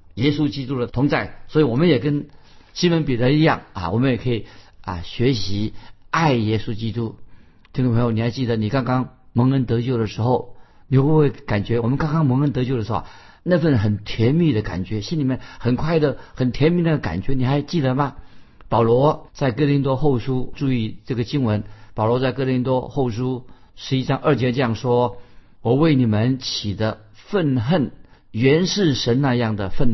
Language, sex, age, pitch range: Chinese, male, 50-69, 115-150 Hz